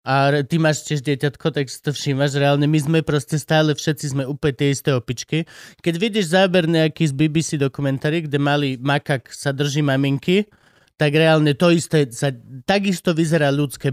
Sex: male